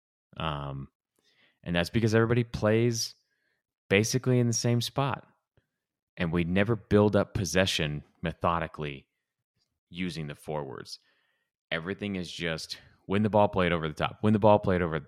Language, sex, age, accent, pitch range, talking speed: English, male, 30-49, American, 80-105 Hz, 145 wpm